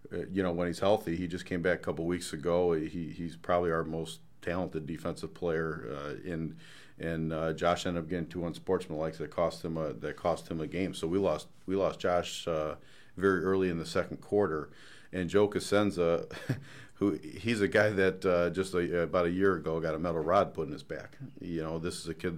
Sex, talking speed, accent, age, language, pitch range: male, 225 wpm, American, 40-59, English, 80-95 Hz